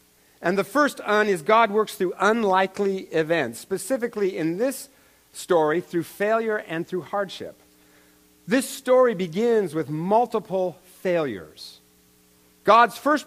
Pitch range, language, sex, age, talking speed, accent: 140-220 Hz, English, male, 50-69, 120 wpm, American